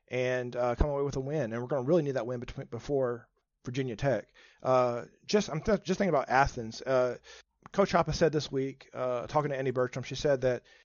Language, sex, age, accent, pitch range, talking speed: English, male, 40-59, American, 125-150 Hz, 225 wpm